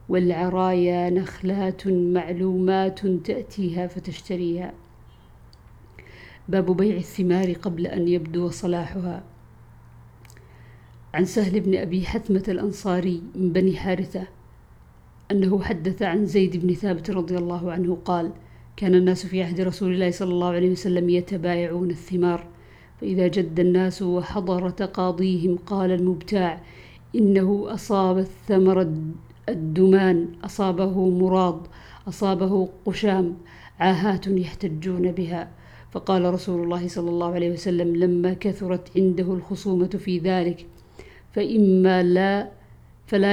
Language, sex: Arabic, female